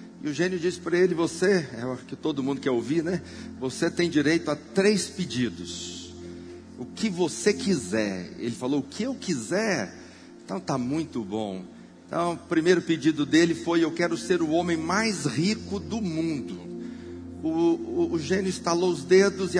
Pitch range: 145-190 Hz